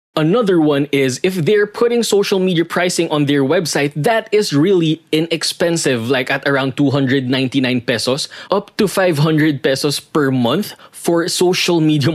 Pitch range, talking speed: 135-190 Hz, 150 wpm